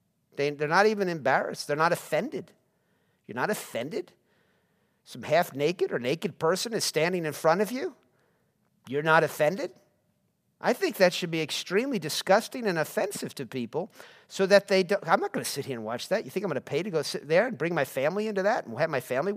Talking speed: 210 wpm